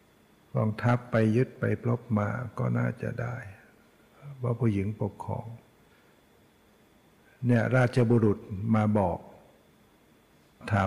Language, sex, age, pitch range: Thai, male, 60-79, 105-120 Hz